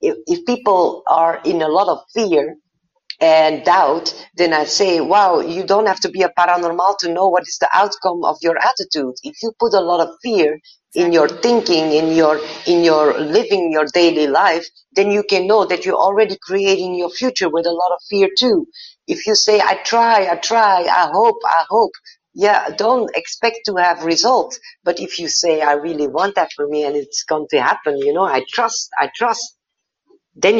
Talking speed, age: 200 wpm, 50-69